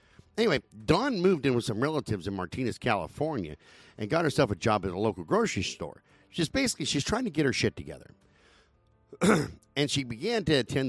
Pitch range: 100-145 Hz